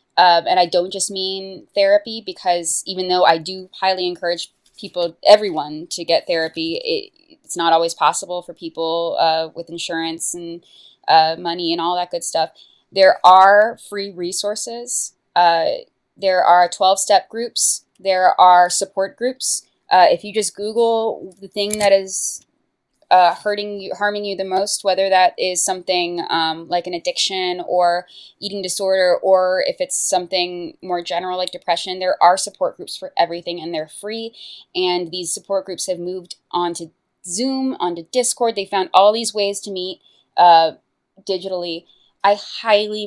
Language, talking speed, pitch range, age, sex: English, 160 wpm, 175-200 Hz, 20-39, female